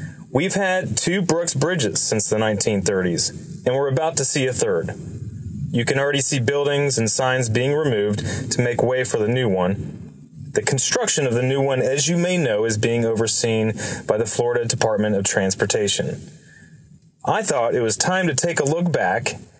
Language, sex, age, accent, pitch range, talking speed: English, male, 30-49, American, 125-175 Hz, 185 wpm